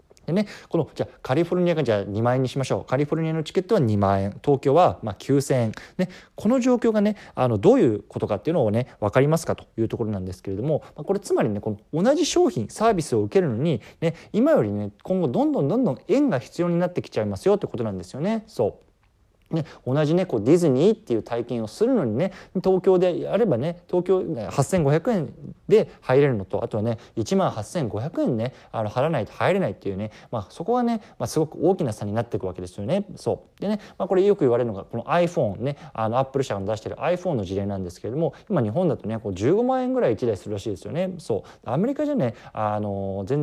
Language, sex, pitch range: Japanese, male, 110-175 Hz